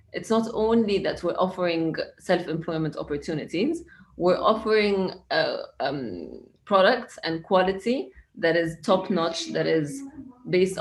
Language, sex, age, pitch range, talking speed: English, female, 20-39, 165-210 Hz, 110 wpm